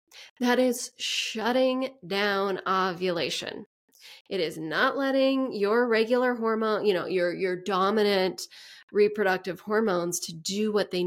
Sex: female